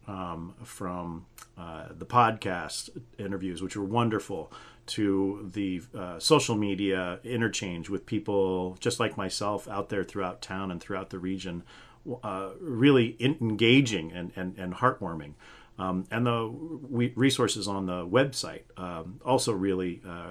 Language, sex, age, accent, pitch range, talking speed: English, male, 40-59, American, 95-115 Hz, 135 wpm